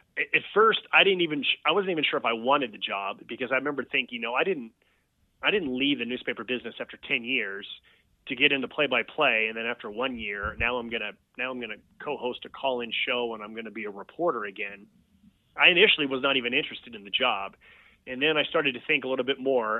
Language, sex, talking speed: English, male, 240 wpm